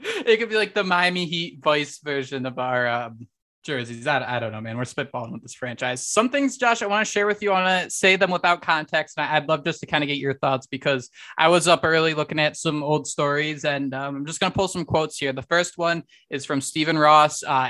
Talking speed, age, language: 260 wpm, 20-39, English